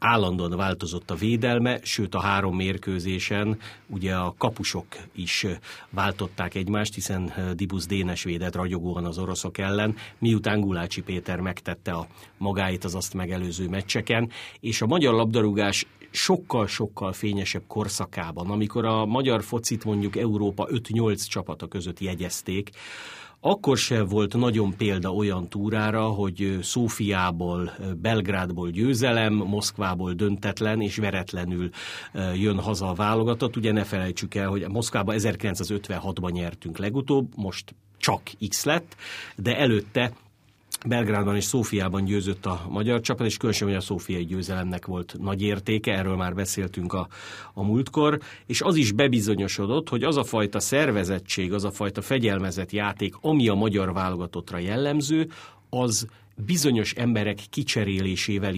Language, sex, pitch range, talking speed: Hungarian, male, 95-110 Hz, 130 wpm